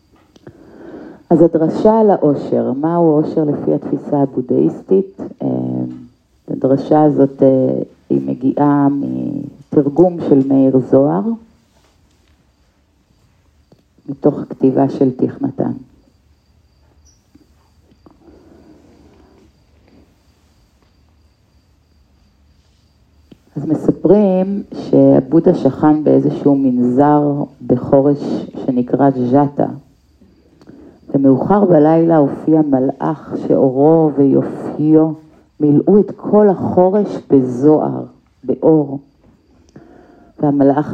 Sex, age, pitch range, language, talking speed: female, 50-69, 110-160 Hz, Hebrew, 65 wpm